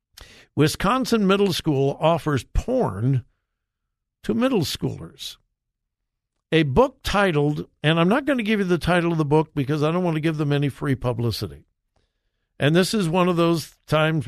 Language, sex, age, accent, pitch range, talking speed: English, male, 60-79, American, 140-195 Hz, 170 wpm